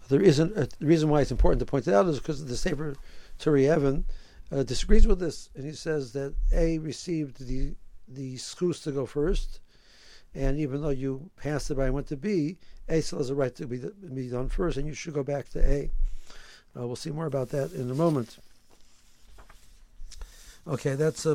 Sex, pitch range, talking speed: male, 130-160 Hz, 200 wpm